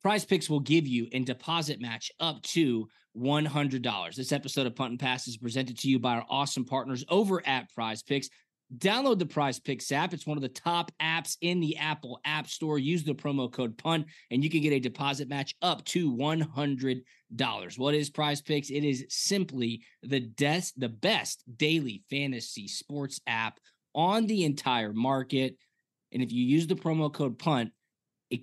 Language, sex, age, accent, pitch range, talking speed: English, male, 20-39, American, 125-155 Hz, 180 wpm